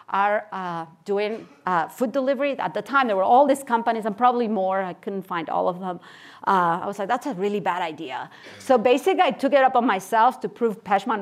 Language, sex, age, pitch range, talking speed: English, female, 40-59, 180-225 Hz, 230 wpm